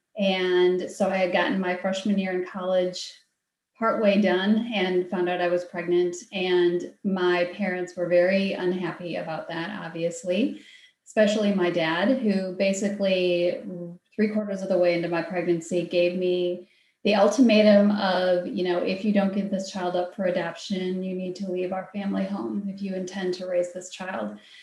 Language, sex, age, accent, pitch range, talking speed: English, female, 30-49, American, 180-210 Hz, 170 wpm